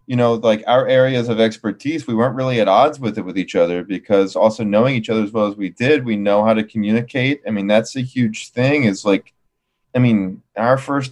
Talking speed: 235 wpm